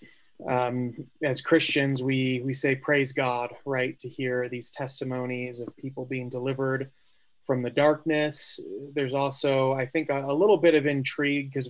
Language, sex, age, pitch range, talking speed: English, male, 30-49, 130-145 Hz, 160 wpm